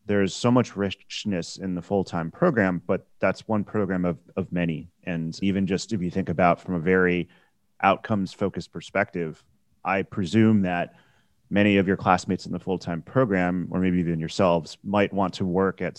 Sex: male